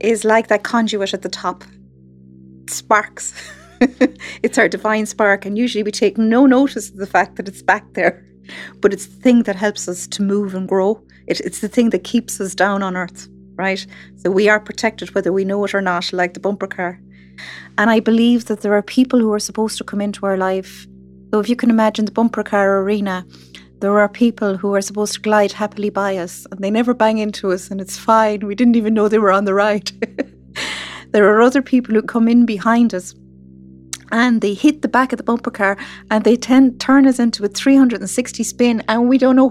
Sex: female